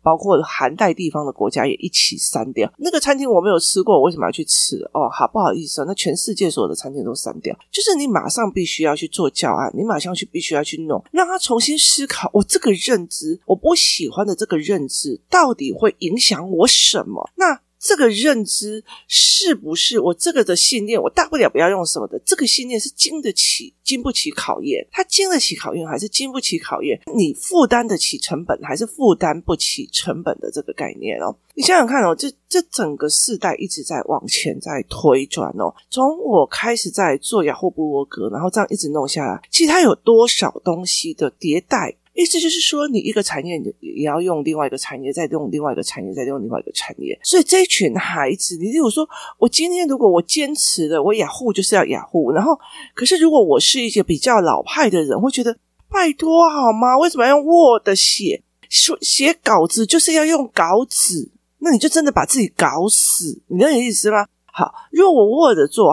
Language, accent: Chinese, native